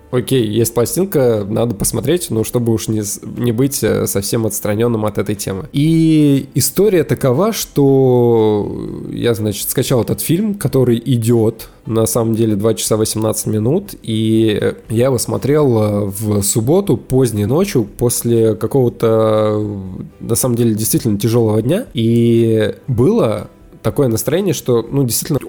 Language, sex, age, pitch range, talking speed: Russian, male, 20-39, 110-140 Hz, 135 wpm